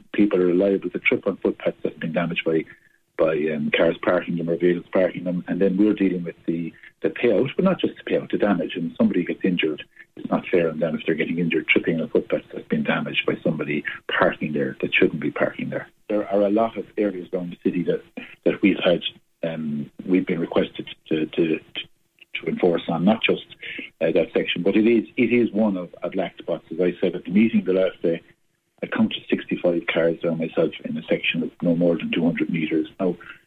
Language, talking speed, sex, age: English, 230 wpm, male, 50-69